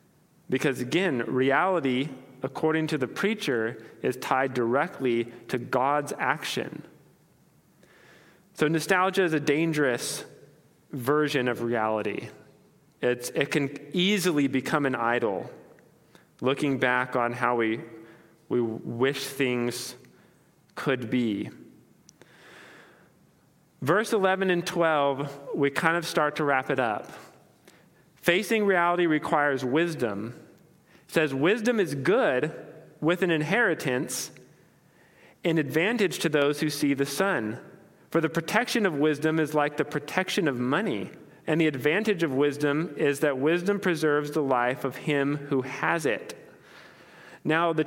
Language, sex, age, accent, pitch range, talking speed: English, male, 40-59, American, 135-170 Hz, 125 wpm